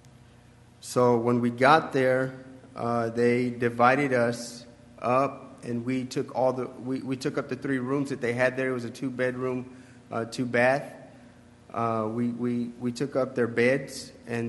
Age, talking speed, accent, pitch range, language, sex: 30-49, 170 wpm, American, 115-130 Hz, English, male